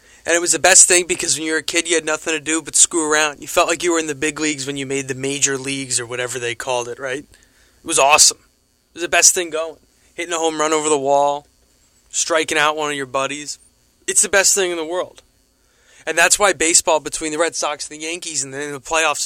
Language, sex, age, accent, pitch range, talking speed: English, male, 20-39, American, 140-170 Hz, 265 wpm